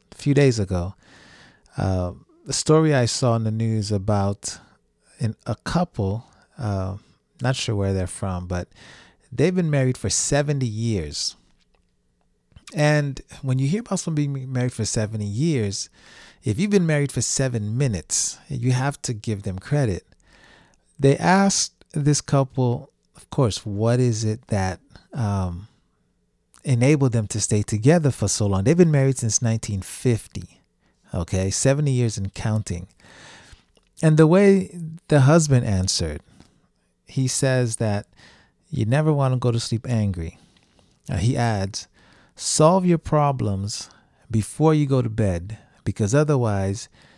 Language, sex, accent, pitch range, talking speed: English, male, American, 100-140 Hz, 140 wpm